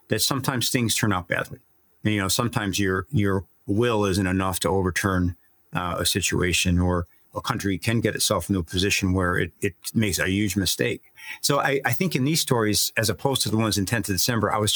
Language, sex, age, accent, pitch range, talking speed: English, male, 50-69, American, 95-120 Hz, 210 wpm